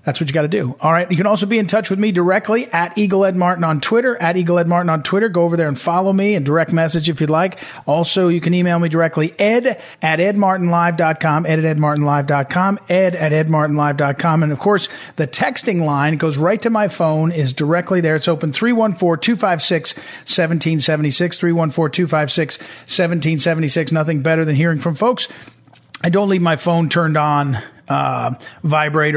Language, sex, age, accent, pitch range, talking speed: English, male, 50-69, American, 155-200 Hz, 185 wpm